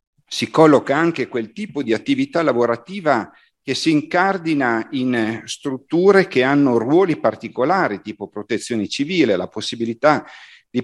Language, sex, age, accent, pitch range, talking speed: Italian, male, 50-69, native, 105-150 Hz, 125 wpm